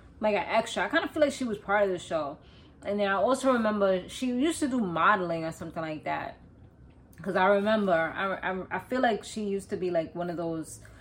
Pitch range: 180-220 Hz